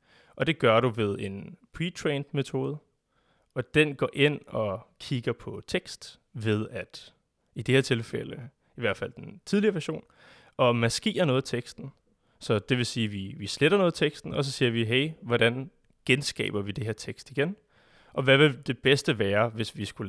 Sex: male